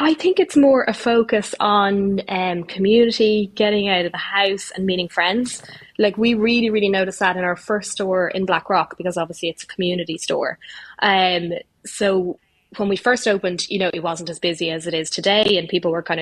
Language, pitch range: English, 175-210 Hz